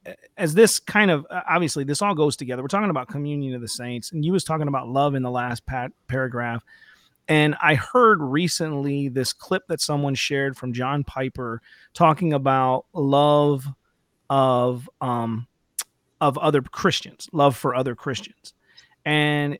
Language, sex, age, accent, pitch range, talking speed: English, male, 30-49, American, 130-160 Hz, 155 wpm